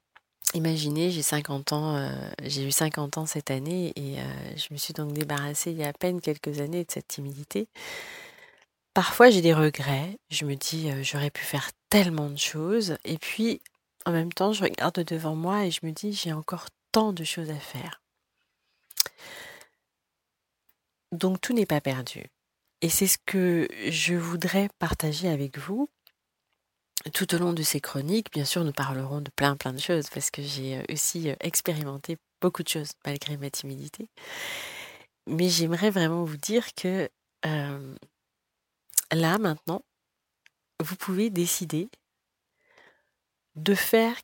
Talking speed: 155 wpm